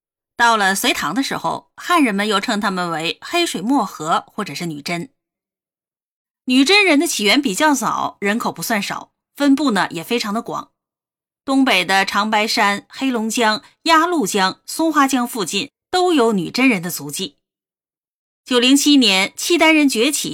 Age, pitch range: 30-49, 195-280 Hz